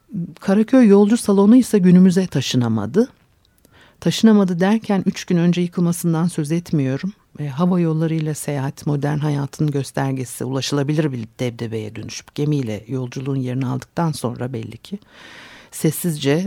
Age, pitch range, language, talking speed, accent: 60-79, 130-175 Hz, Turkish, 120 wpm, native